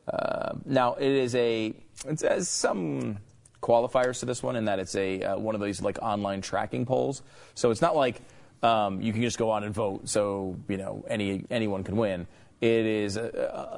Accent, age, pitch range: American, 30-49, 95-120 Hz